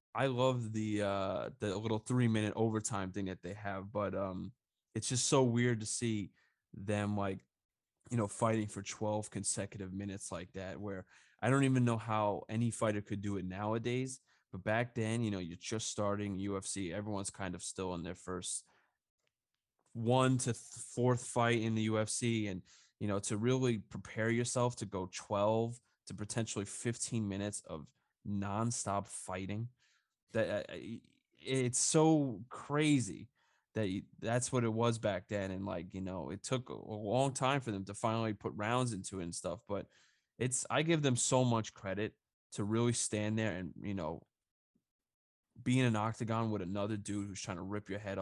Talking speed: 180 wpm